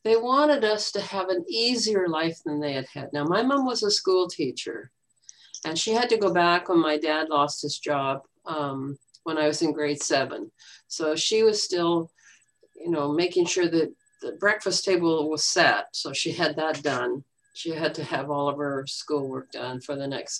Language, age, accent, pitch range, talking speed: English, 50-69, American, 155-225 Hz, 205 wpm